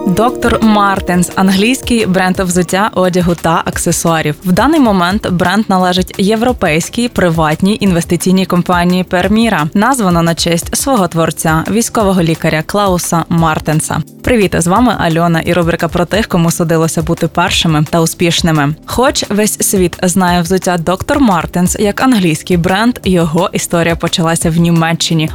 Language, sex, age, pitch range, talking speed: Ukrainian, female, 20-39, 165-205 Hz, 135 wpm